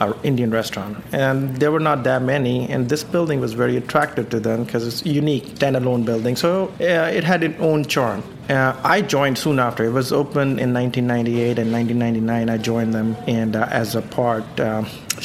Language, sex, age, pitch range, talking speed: English, male, 30-49, 120-150 Hz, 195 wpm